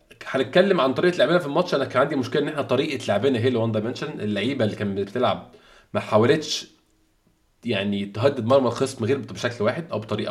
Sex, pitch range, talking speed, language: male, 110-130 Hz, 190 wpm, Arabic